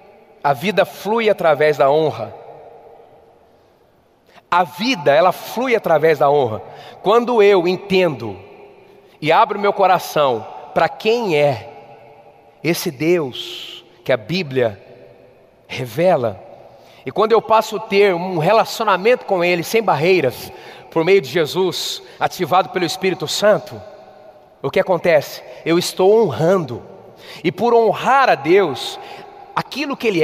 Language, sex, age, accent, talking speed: Portuguese, male, 40-59, Brazilian, 125 wpm